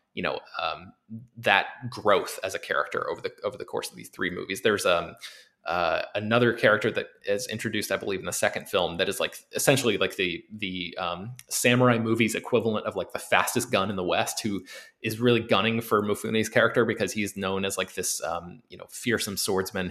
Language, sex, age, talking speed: English, male, 20-39, 205 wpm